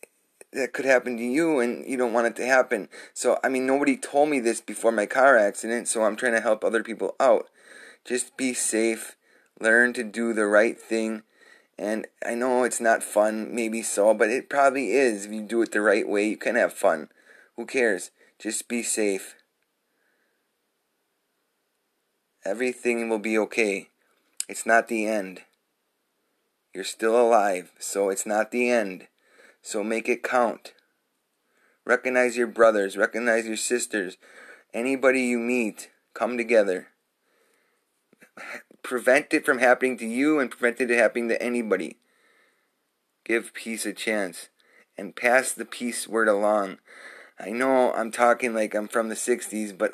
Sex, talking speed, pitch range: male, 160 wpm, 110-125 Hz